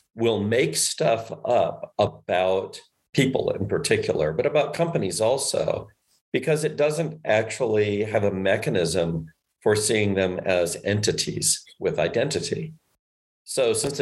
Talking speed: 120 wpm